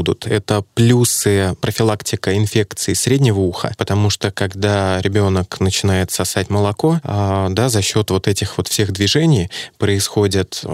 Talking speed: 130 wpm